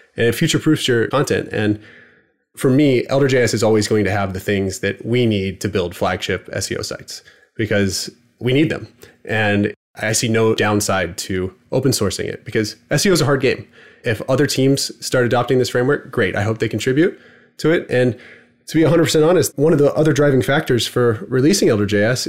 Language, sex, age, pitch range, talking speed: English, male, 20-39, 110-135 Hz, 190 wpm